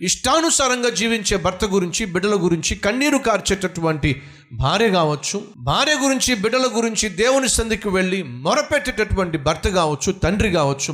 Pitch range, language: 155-235 Hz, Telugu